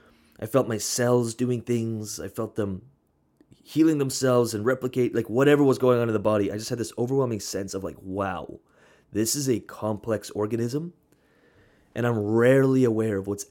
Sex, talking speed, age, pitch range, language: male, 180 wpm, 20-39, 105-130 Hz, English